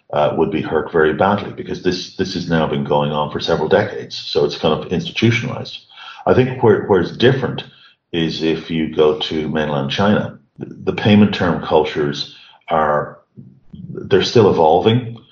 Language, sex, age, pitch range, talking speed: English, male, 40-59, 75-90 Hz, 170 wpm